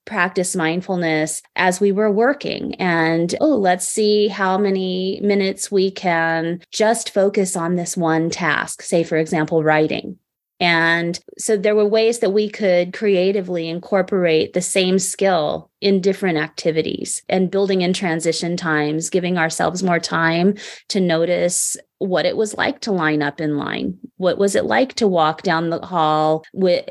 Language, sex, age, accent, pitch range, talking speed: English, female, 30-49, American, 170-210 Hz, 160 wpm